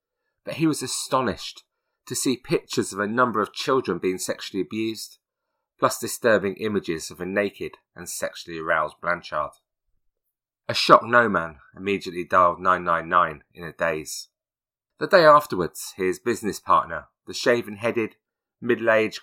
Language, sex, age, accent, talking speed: English, male, 30-49, British, 135 wpm